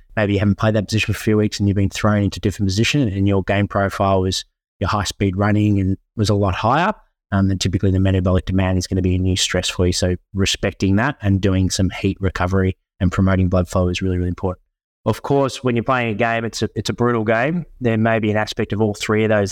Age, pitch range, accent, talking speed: 20-39, 95-105 Hz, Australian, 260 wpm